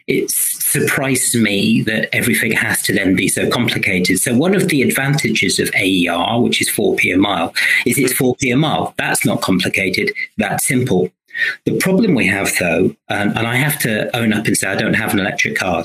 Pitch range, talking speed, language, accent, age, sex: 100-140 Hz, 200 wpm, English, British, 40-59, male